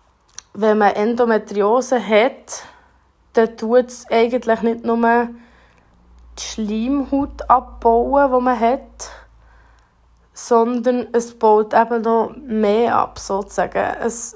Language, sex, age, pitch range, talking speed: German, female, 20-39, 205-235 Hz, 100 wpm